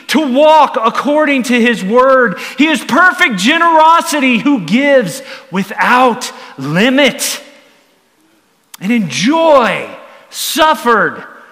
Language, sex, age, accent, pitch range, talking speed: English, male, 40-59, American, 220-290 Hz, 95 wpm